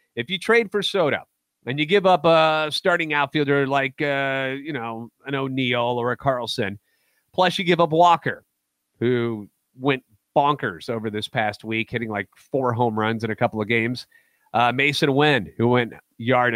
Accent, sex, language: American, male, English